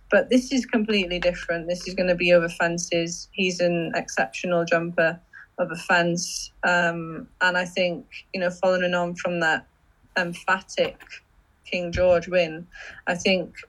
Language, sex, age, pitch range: English, female, 20-39, 175-190 Hz